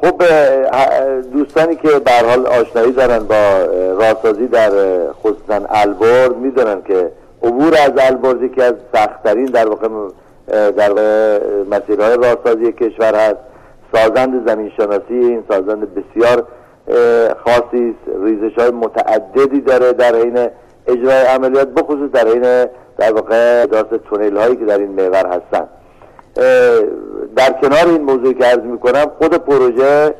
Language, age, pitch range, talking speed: Persian, 50-69, 110-150 Hz, 130 wpm